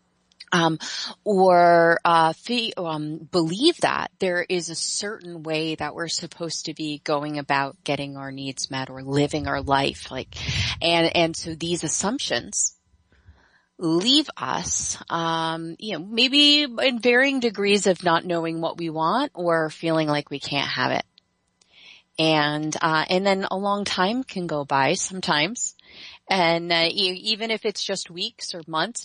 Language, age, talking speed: English, 30-49, 155 wpm